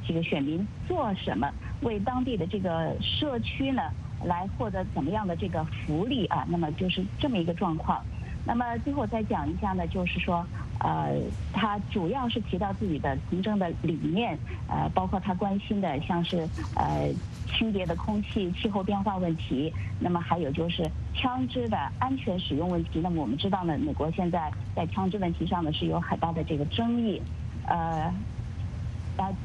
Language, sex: English, female